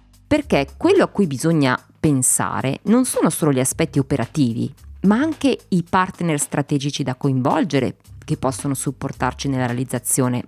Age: 20-39